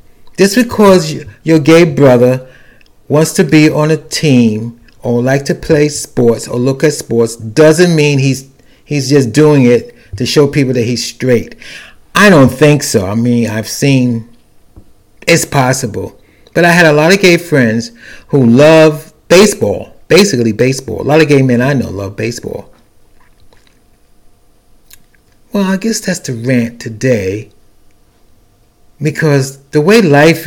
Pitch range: 115-155 Hz